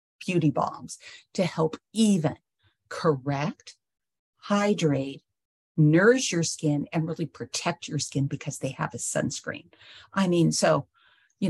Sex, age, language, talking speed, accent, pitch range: female, 50-69, English, 125 wpm, American, 150-185 Hz